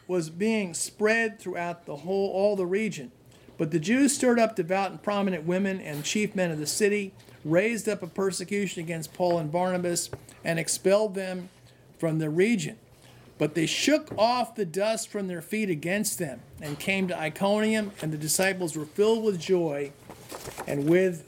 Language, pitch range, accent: English, 155-195 Hz, American